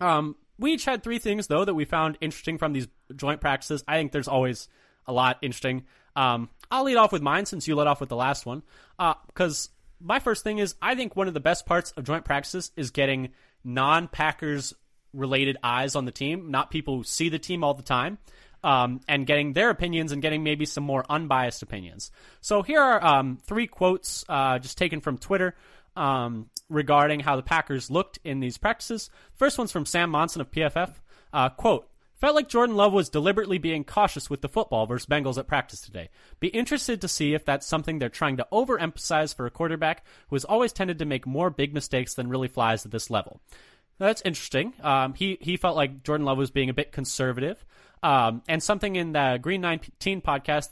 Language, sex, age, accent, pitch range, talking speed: English, male, 20-39, American, 130-180 Hz, 210 wpm